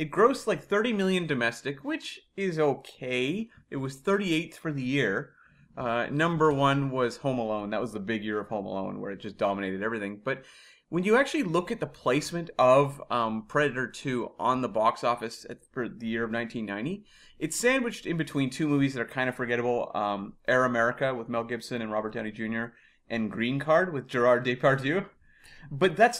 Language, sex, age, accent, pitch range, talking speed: English, male, 30-49, American, 120-155 Hz, 190 wpm